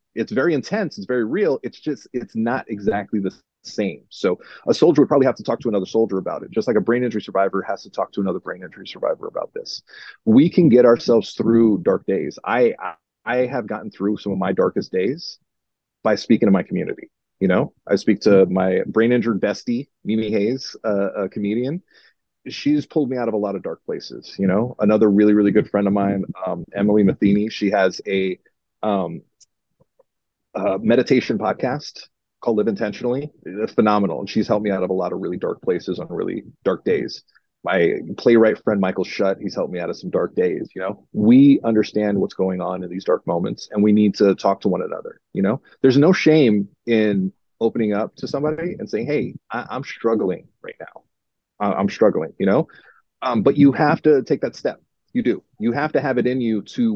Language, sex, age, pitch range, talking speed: English, male, 30-49, 100-125 Hz, 215 wpm